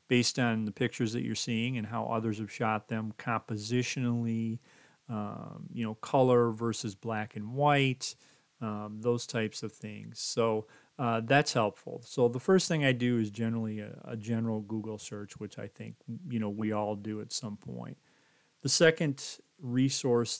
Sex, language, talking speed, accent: male, English, 170 wpm, American